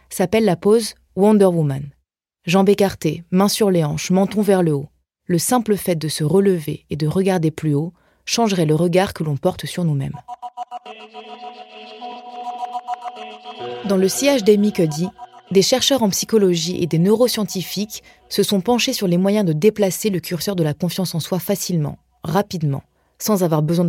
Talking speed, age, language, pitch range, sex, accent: 170 wpm, 30-49, French, 160-200 Hz, female, French